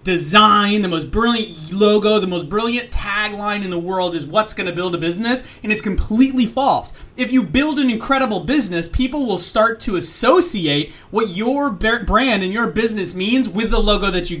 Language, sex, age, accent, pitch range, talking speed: English, male, 30-49, American, 175-225 Hz, 190 wpm